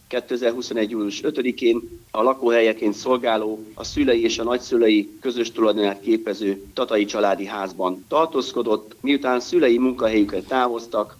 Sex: male